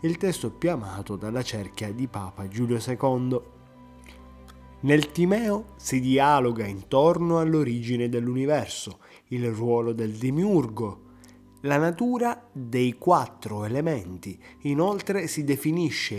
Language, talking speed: Italian, 110 wpm